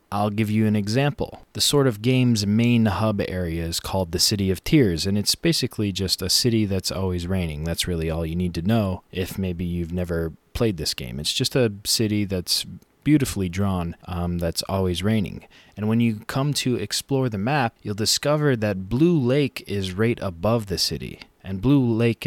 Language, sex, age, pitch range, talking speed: English, male, 20-39, 95-120 Hz, 195 wpm